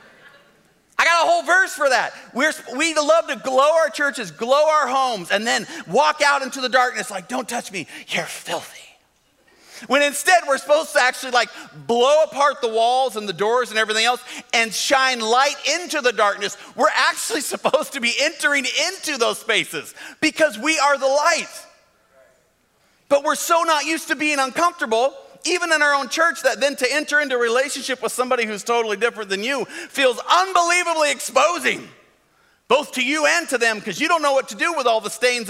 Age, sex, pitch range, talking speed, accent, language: 40-59, male, 230-300 Hz, 195 wpm, American, English